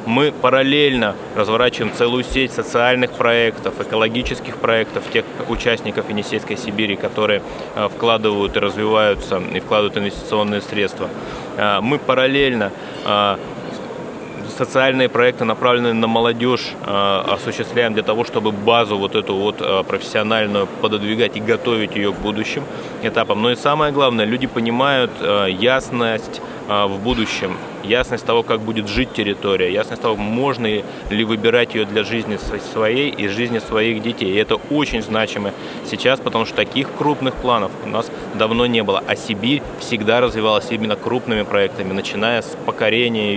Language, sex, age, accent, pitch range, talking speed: Russian, male, 20-39, native, 105-125 Hz, 135 wpm